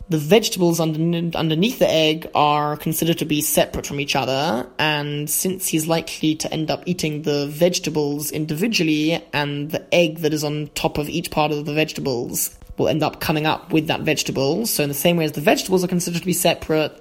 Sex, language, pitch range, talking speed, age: male, English, 155-180 Hz, 200 wpm, 20-39